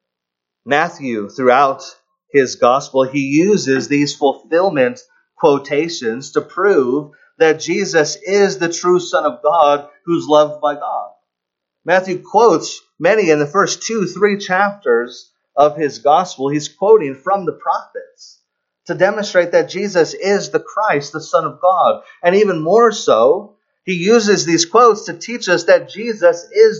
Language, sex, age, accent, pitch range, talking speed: English, male, 30-49, American, 145-225 Hz, 145 wpm